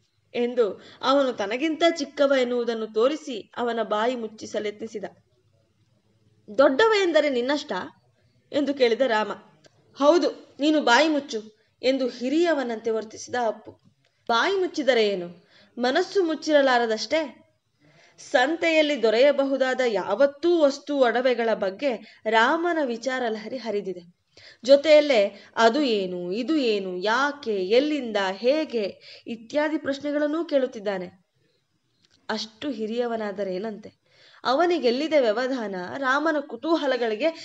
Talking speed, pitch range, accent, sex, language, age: 90 wpm, 215-290 Hz, native, female, Kannada, 20-39